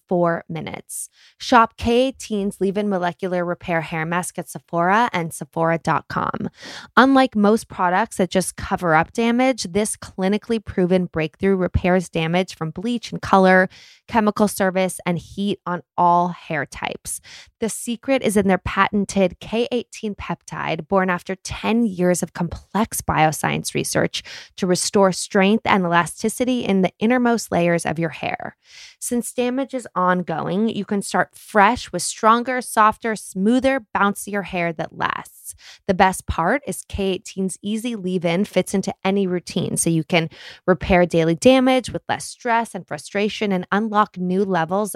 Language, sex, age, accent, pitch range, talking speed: English, female, 20-39, American, 175-215 Hz, 145 wpm